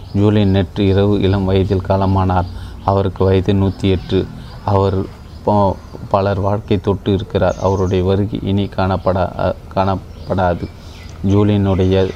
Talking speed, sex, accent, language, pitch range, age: 100 wpm, male, native, Tamil, 95-100 Hz, 30-49